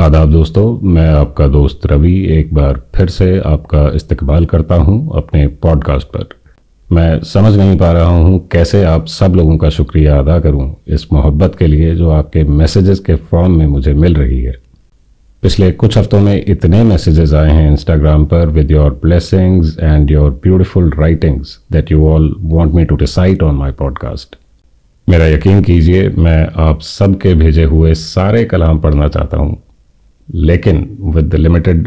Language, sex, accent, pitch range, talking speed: Hindi, male, native, 75-90 Hz, 165 wpm